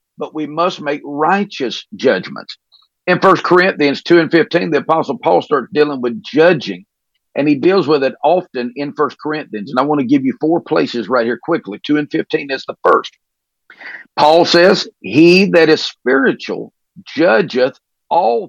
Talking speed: 170 wpm